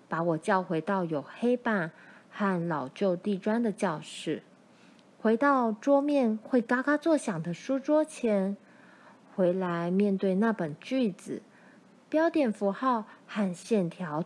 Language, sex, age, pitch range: Chinese, female, 20-39, 190-260 Hz